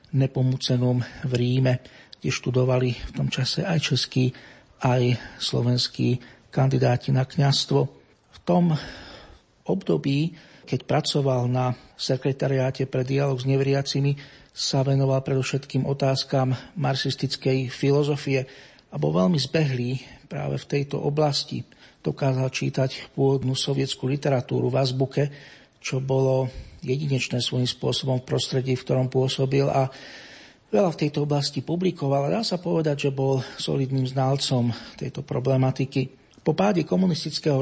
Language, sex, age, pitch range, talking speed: Slovak, male, 50-69, 130-145 Hz, 120 wpm